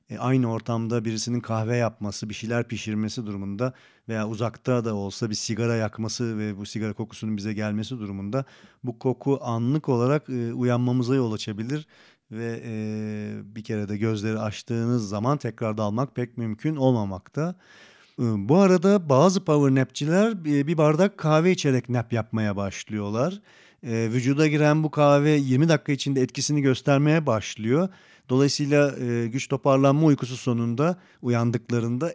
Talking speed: 140 wpm